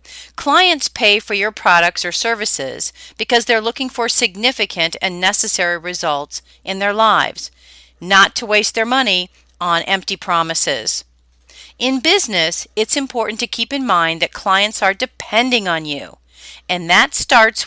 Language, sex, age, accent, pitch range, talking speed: English, female, 40-59, American, 175-235 Hz, 145 wpm